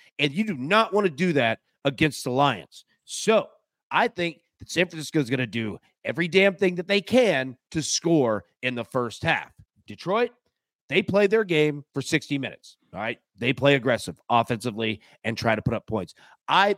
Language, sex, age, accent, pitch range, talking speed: English, male, 30-49, American, 120-175 Hz, 195 wpm